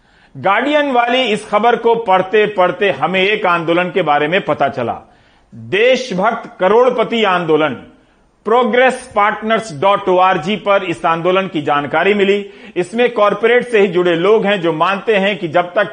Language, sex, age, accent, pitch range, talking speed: Hindi, male, 40-59, native, 170-225 Hz, 145 wpm